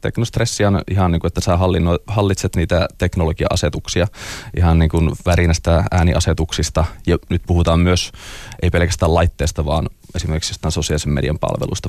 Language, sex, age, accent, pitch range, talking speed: Finnish, male, 20-39, native, 85-100 Hz, 135 wpm